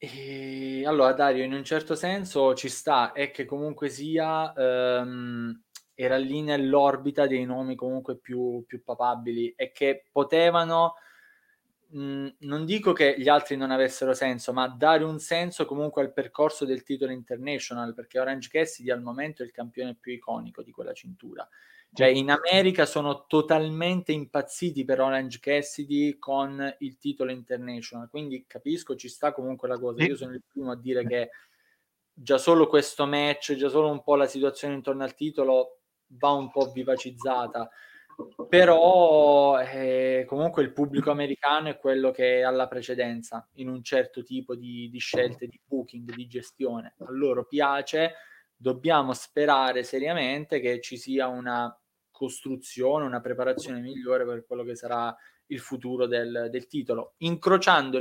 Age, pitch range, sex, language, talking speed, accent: 20-39, 125-150 Hz, male, Italian, 155 wpm, native